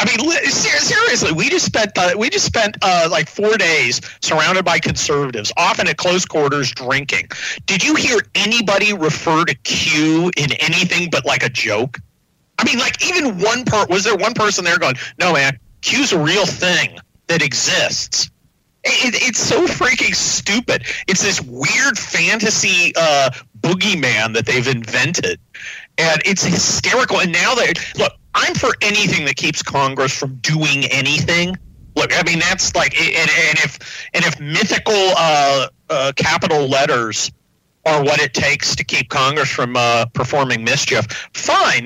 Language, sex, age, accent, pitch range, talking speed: English, male, 40-59, American, 135-180 Hz, 165 wpm